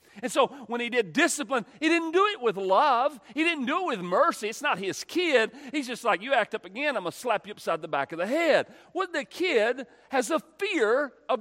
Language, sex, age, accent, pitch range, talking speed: English, male, 40-59, American, 170-285 Hz, 250 wpm